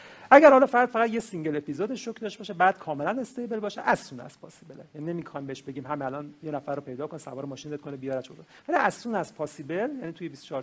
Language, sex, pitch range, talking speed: Persian, male, 140-195 Hz, 245 wpm